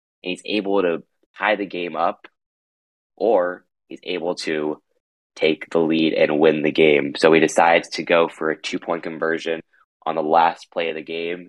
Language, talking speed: English, 185 wpm